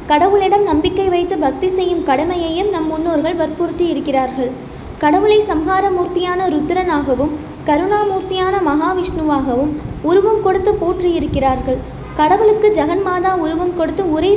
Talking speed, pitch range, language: 95 wpm, 300-370 Hz, Tamil